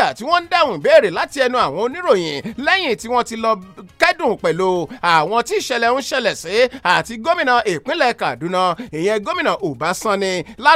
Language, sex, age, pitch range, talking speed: English, male, 30-49, 200-295 Hz, 200 wpm